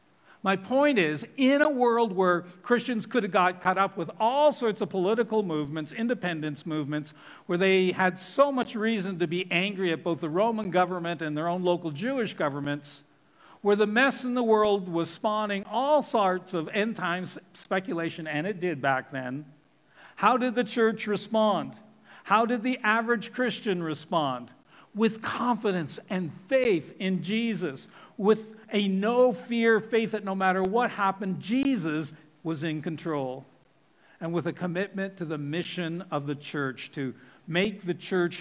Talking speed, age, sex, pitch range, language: 160 wpm, 60-79, male, 160-225 Hz, English